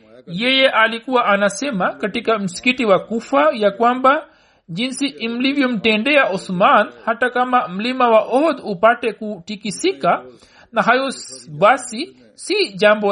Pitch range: 200-245 Hz